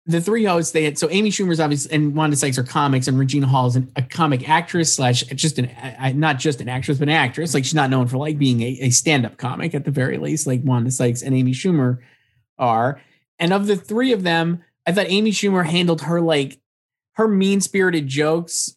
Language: English